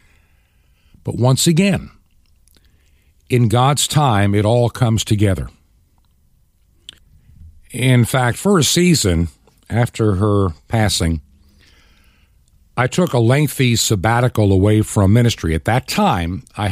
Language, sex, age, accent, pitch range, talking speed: English, male, 60-79, American, 90-125 Hz, 110 wpm